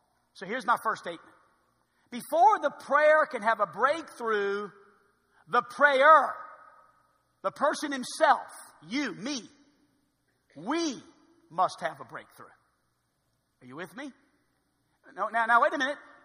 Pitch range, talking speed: 230-300 Hz, 125 wpm